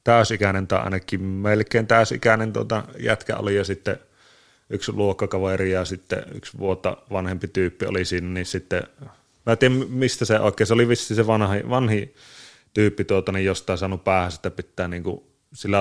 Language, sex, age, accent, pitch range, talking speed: Finnish, male, 30-49, native, 95-115 Hz, 170 wpm